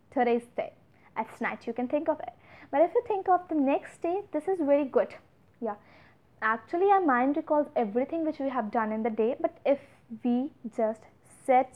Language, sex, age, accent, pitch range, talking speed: Hindi, female, 20-39, native, 235-300 Hz, 200 wpm